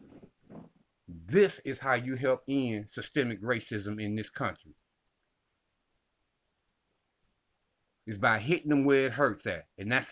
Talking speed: 125 wpm